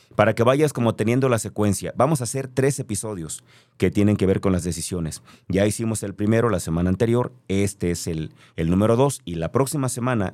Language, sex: Spanish, male